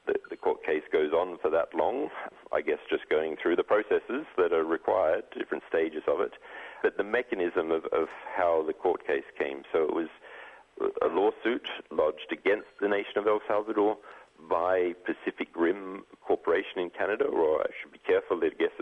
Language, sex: English, male